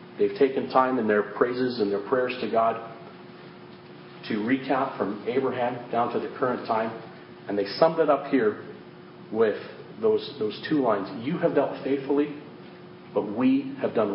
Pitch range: 120-150 Hz